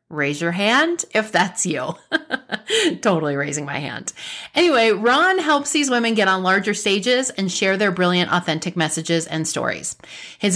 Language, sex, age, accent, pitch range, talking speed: English, female, 30-49, American, 170-240 Hz, 160 wpm